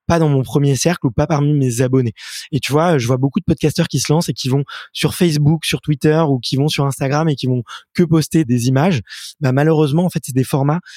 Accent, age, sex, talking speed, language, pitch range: French, 20-39, male, 255 wpm, French, 135-165 Hz